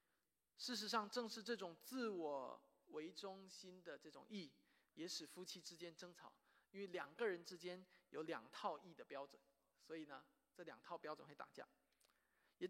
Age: 20-39